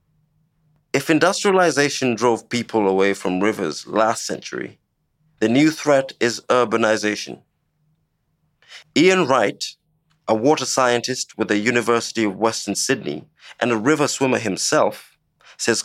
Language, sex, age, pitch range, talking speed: English, male, 30-49, 110-145 Hz, 115 wpm